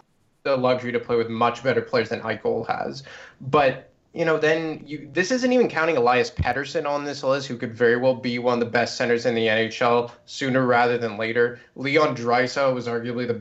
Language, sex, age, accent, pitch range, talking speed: English, male, 20-39, American, 120-140 Hz, 210 wpm